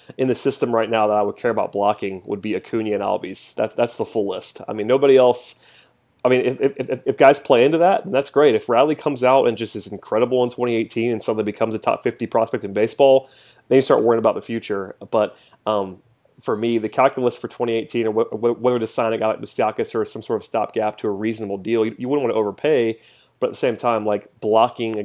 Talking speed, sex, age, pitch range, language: 240 wpm, male, 30-49, 110-125 Hz, English